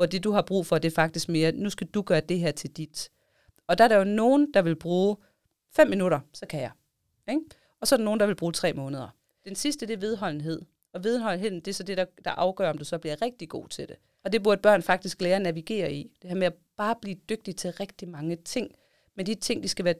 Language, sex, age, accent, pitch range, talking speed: Danish, female, 30-49, native, 170-215 Hz, 275 wpm